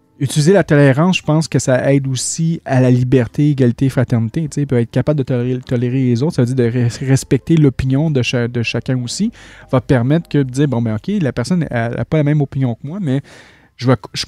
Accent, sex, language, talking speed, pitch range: Canadian, male, French, 235 wpm, 120-145 Hz